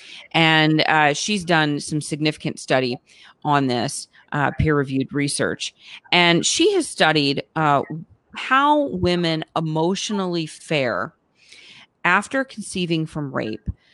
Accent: American